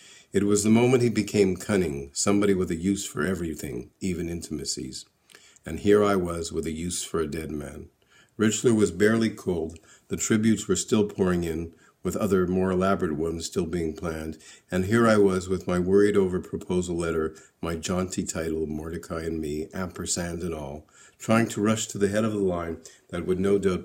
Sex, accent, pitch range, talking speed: male, American, 80-100 Hz, 190 wpm